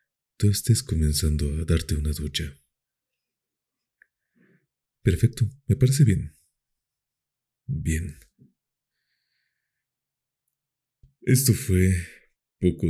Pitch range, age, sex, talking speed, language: 75-125 Hz, 40-59, male, 65 wpm, Spanish